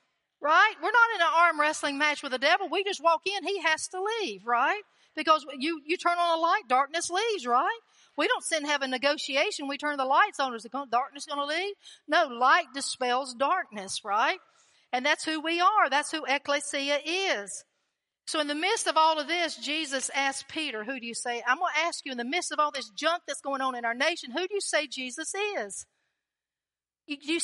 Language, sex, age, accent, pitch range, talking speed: English, female, 50-69, American, 280-370 Hz, 220 wpm